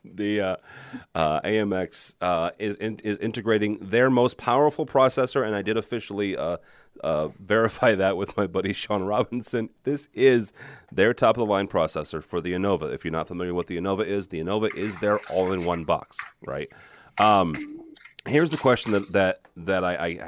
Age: 30-49